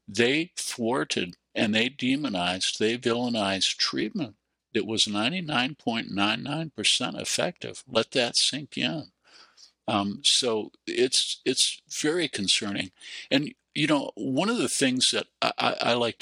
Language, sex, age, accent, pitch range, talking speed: English, male, 60-79, American, 100-120 Hz, 120 wpm